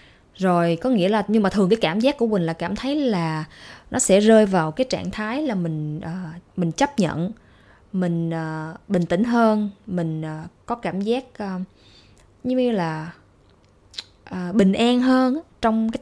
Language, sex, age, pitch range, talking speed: Vietnamese, female, 20-39, 170-230 Hz, 185 wpm